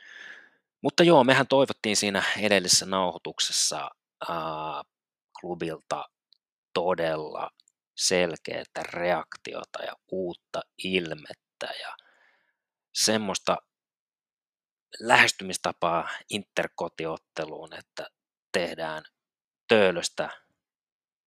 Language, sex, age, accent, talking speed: Finnish, male, 30-49, native, 60 wpm